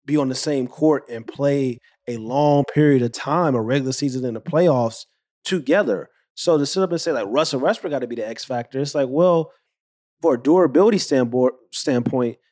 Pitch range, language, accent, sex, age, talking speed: 125-165 Hz, English, American, male, 30-49, 195 wpm